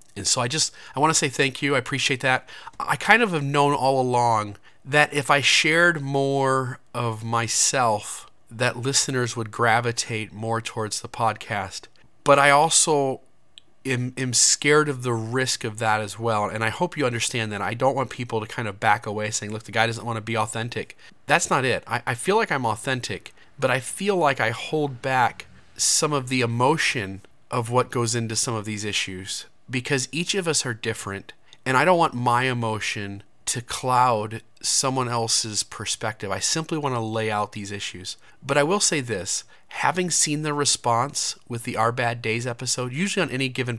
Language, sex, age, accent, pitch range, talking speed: English, male, 30-49, American, 110-140 Hz, 195 wpm